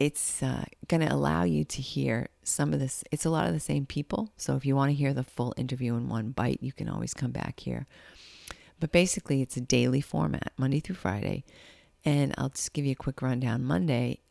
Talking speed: 220 wpm